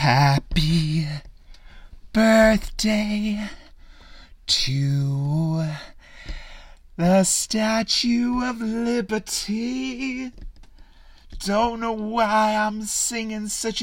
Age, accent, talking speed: 30-49, American, 55 wpm